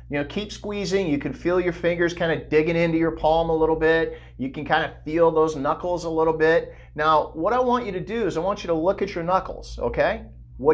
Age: 50-69